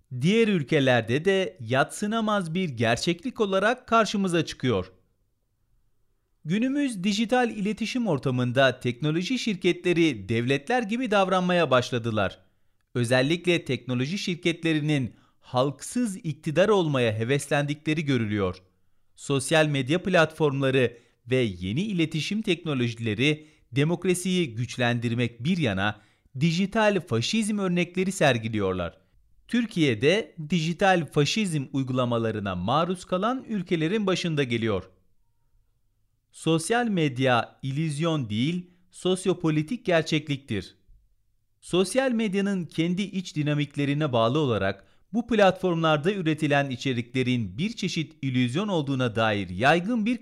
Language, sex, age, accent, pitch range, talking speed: Turkish, male, 40-59, native, 115-185 Hz, 90 wpm